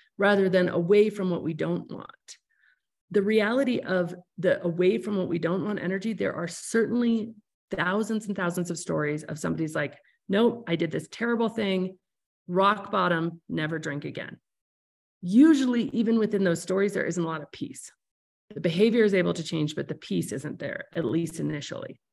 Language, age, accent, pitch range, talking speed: English, 40-59, American, 165-200 Hz, 180 wpm